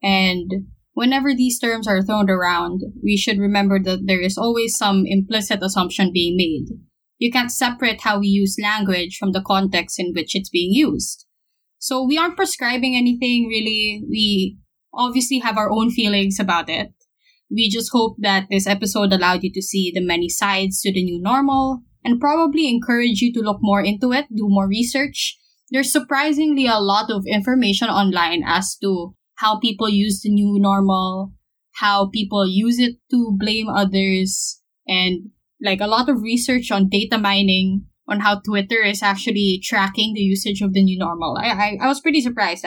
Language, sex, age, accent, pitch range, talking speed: English, female, 20-39, Filipino, 195-245 Hz, 175 wpm